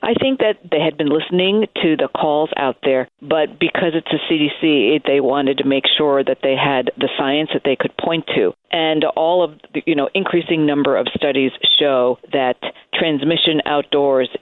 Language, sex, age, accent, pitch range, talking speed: English, female, 50-69, American, 140-170 Hz, 190 wpm